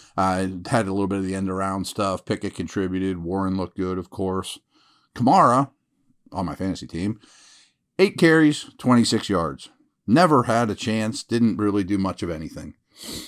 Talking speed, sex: 165 wpm, male